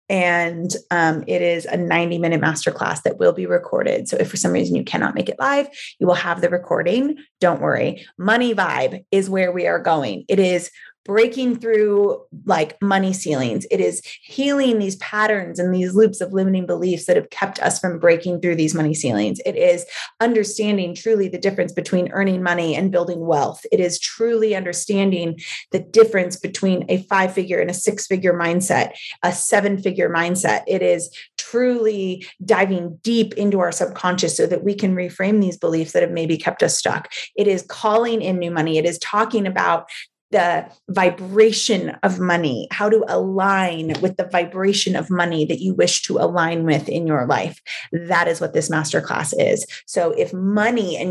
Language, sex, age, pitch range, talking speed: English, female, 30-49, 175-215 Hz, 180 wpm